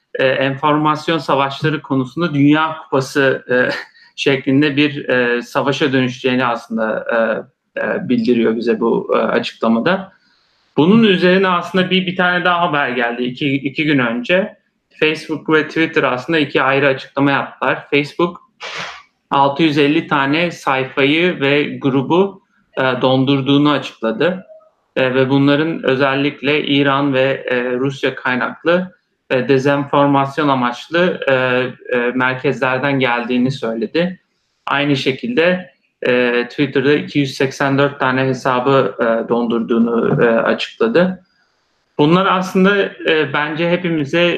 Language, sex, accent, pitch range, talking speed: Turkish, male, native, 125-155 Hz, 110 wpm